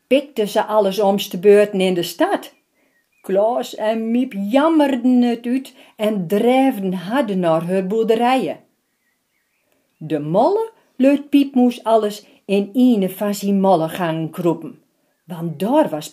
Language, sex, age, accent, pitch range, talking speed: Dutch, female, 40-59, Dutch, 185-275 Hz, 130 wpm